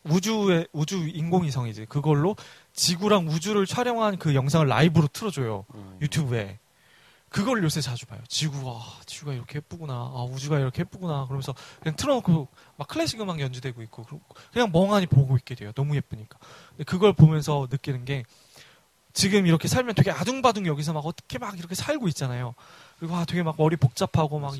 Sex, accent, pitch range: male, native, 135-180 Hz